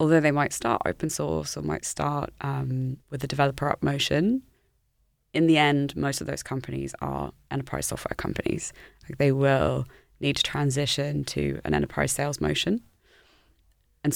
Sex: female